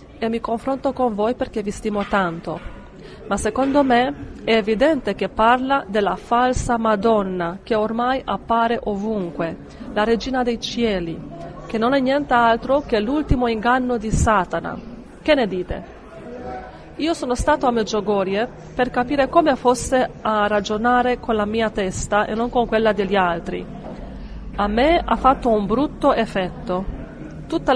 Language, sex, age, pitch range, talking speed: Italian, female, 30-49, 205-250 Hz, 145 wpm